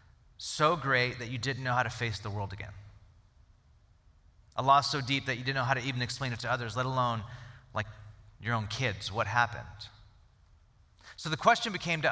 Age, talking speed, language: 30-49, 200 wpm, English